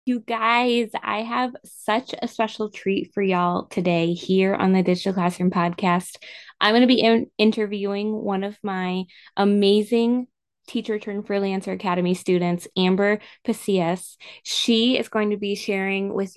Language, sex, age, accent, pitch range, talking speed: English, female, 20-39, American, 185-220 Hz, 135 wpm